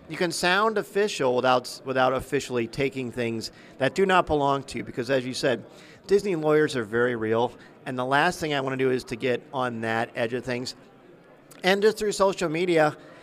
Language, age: English, 50-69